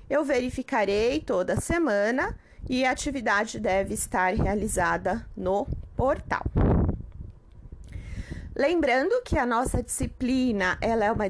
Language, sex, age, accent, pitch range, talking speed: Portuguese, female, 30-49, Brazilian, 180-235 Hz, 105 wpm